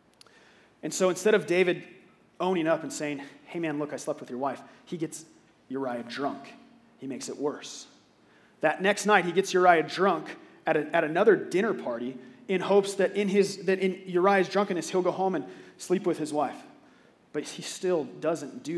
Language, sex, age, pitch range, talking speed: English, male, 30-49, 160-195 Hz, 190 wpm